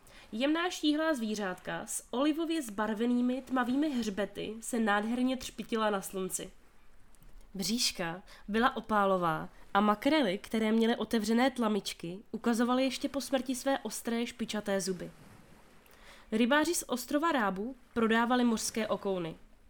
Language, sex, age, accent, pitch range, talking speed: Czech, female, 20-39, native, 200-255 Hz, 115 wpm